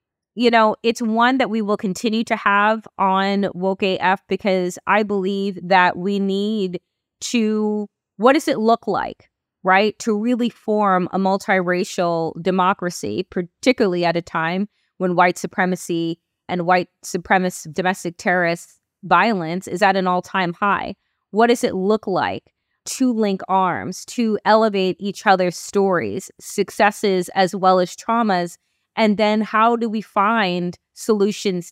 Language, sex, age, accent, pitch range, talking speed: English, female, 20-39, American, 180-215 Hz, 145 wpm